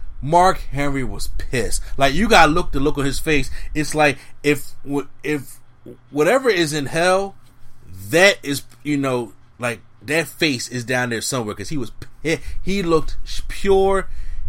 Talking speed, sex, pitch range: 155 wpm, male, 120-160 Hz